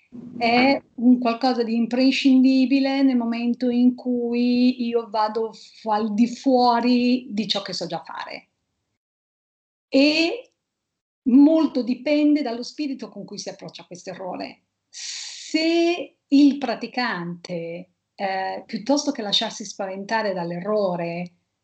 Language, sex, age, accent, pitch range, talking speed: Italian, female, 40-59, native, 190-245 Hz, 110 wpm